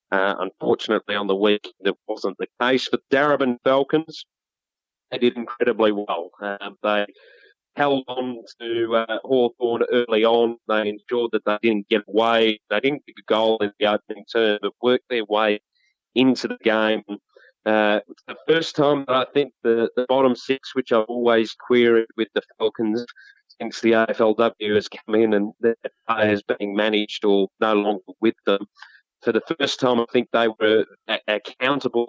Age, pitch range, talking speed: 30-49, 105-120 Hz, 170 wpm